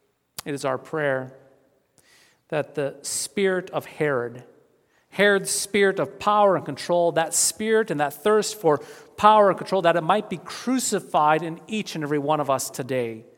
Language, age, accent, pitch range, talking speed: English, 40-59, American, 125-160 Hz, 165 wpm